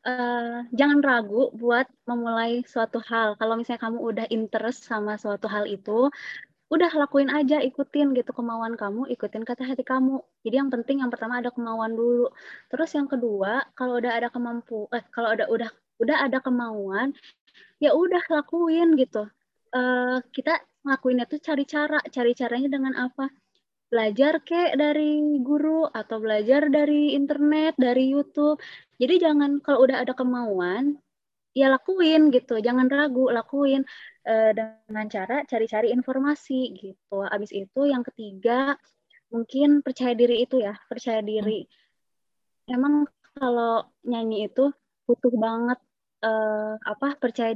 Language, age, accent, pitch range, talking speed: Indonesian, 20-39, native, 225-280 Hz, 140 wpm